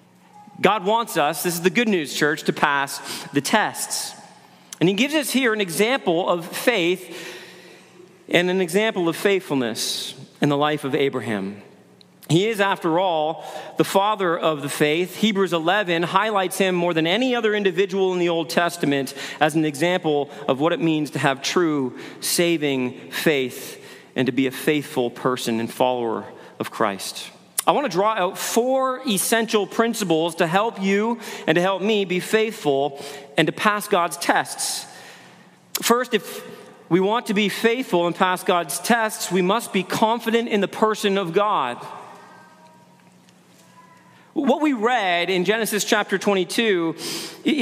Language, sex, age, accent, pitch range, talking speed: English, male, 40-59, American, 155-215 Hz, 160 wpm